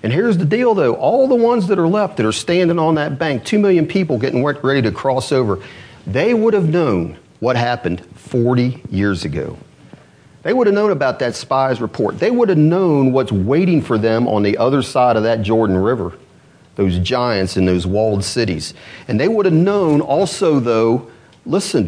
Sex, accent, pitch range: male, American, 110-175 Hz